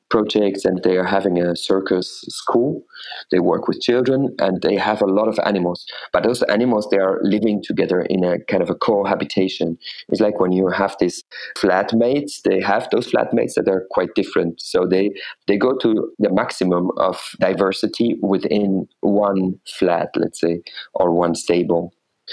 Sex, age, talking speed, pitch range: male, 40-59, 170 wpm, 90-115 Hz